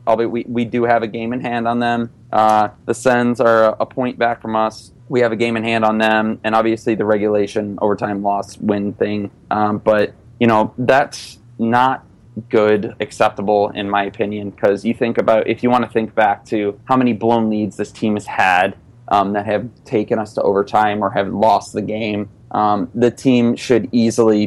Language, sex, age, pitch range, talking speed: English, male, 20-39, 105-120 Hz, 210 wpm